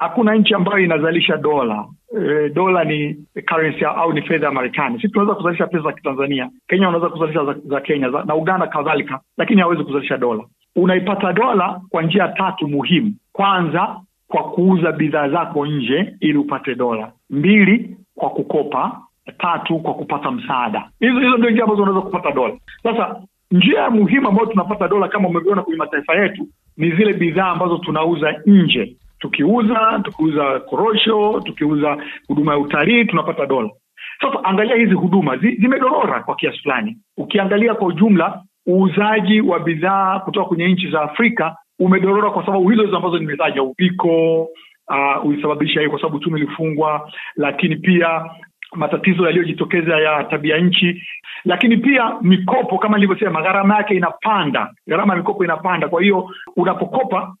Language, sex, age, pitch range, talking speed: Swahili, male, 50-69, 155-205 Hz, 150 wpm